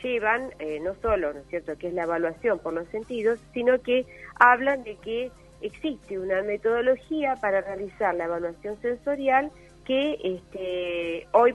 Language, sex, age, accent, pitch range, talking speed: Spanish, female, 40-59, Argentinian, 175-235 Hz, 150 wpm